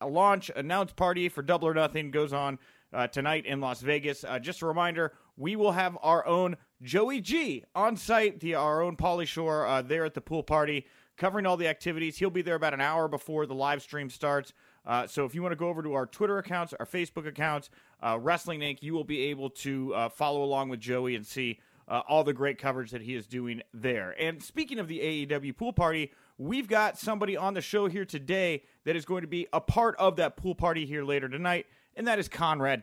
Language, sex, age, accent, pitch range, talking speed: English, male, 30-49, American, 140-180 Hz, 230 wpm